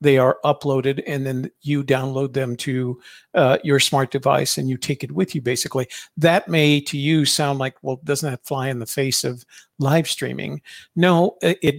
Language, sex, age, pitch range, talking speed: English, male, 50-69, 135-155 Hz, 195 wpm